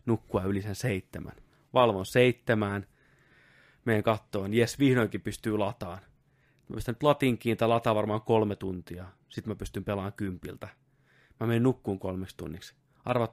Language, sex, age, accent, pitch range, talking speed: Finnish, male, 30-49, native, 100-120 Hz, 145 wpm